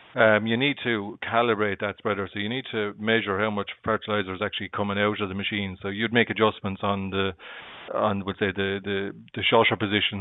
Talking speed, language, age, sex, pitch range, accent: 210 wpm, English, 30-49, male, 100-115 Hz, Irish